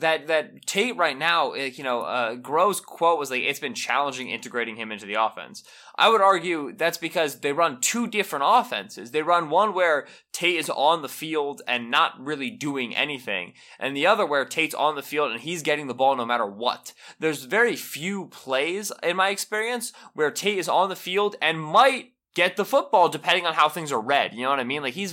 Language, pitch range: English, 130-175 Hz